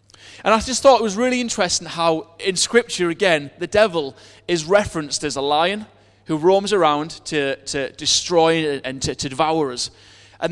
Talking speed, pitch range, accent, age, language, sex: 175 wpm, 125-190 Hz, British, 30-49, English, male